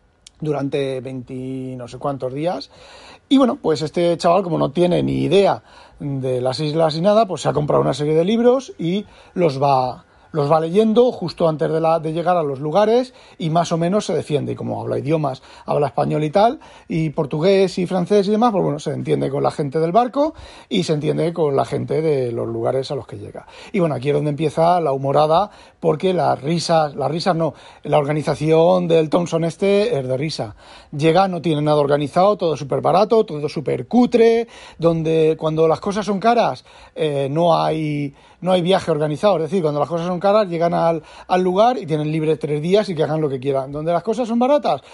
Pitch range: 150-205 Hz